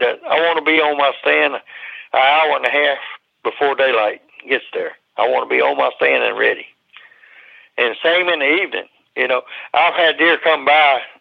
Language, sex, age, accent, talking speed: English, male, 60-79, American, 205 wpm